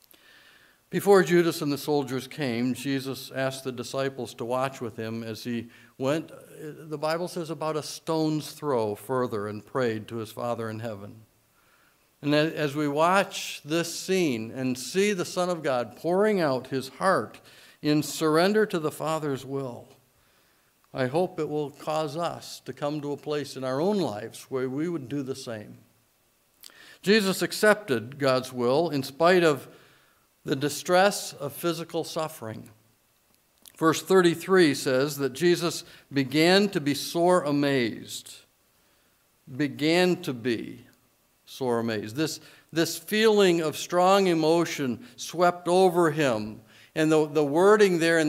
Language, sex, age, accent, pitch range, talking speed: English, male, 60-79, American, 130-170 Hz, 145 wpm